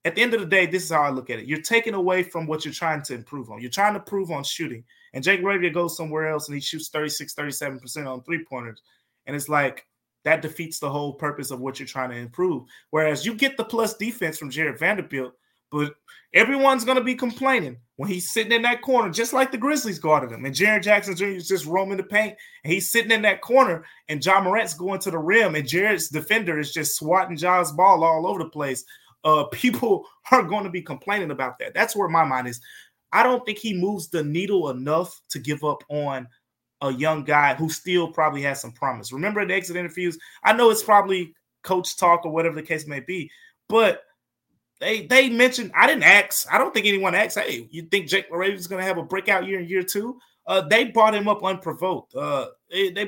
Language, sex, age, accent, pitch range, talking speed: English, male, 20-39, American, 150-205 Hz, 230 wpm